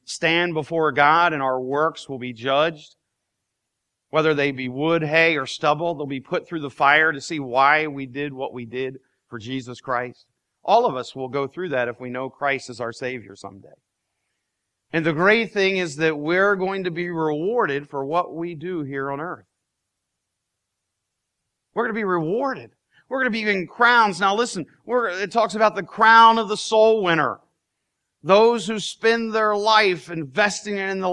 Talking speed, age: 185 wpm, 40-59